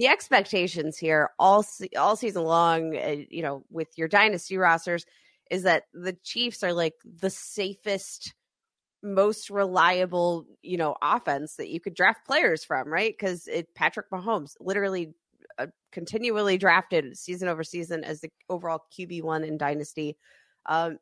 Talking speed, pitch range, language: 145 wpm, 165-205 Hz, English